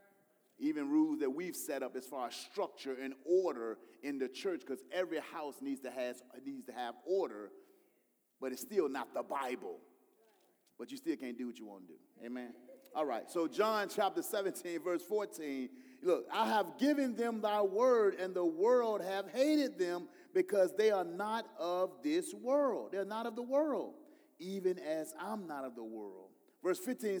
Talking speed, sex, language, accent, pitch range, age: 180 wpm, male, English, American, 185-295 Hz, 30-49